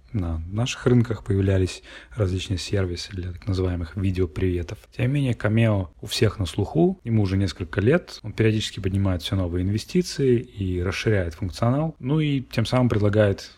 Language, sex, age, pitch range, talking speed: Russian, male, 30-49, 90-115 Hz, 160 wpm